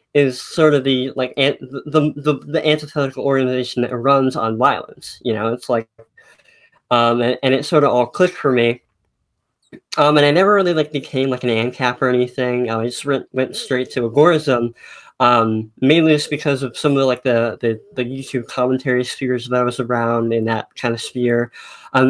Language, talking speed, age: English, 195 wpm, 20-39